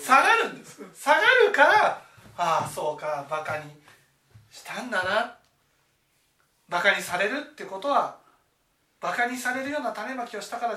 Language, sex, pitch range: Japanese, male, 155-245 Hz